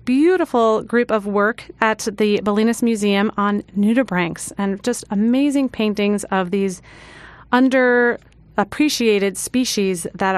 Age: 30-49